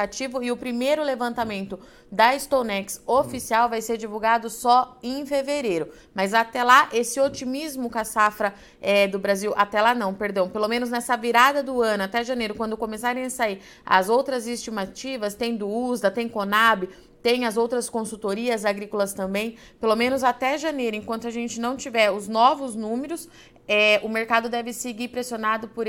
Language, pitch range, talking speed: Portuguese, 210-245 Hz, 165 wpm